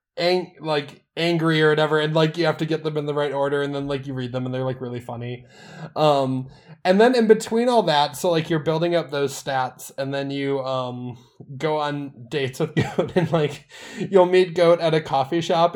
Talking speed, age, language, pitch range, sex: 220 wpm, 20-39, English, 140-185 Hz, male